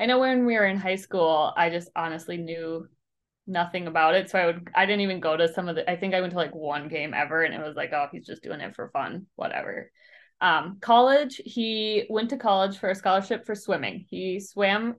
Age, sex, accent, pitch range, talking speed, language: 20-39, female, American, 175-215 Hz, 240 wpm, English